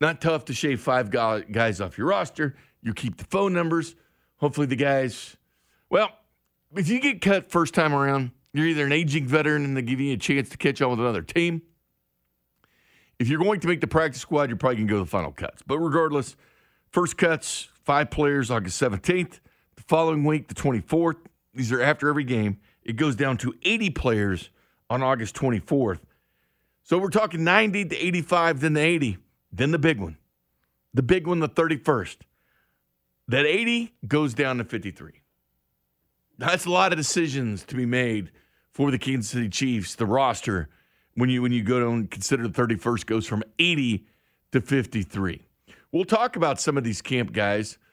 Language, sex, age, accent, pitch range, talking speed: English, male, 50-69, American, 110-155 Hz, 185 wpm